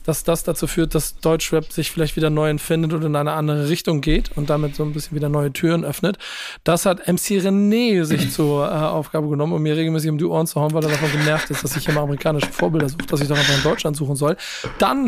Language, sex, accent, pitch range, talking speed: German, male, German, 155-180 Hz, 255 wpm